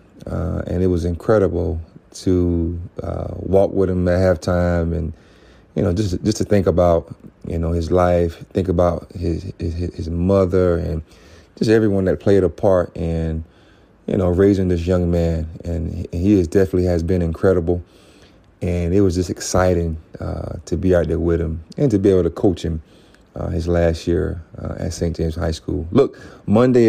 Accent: American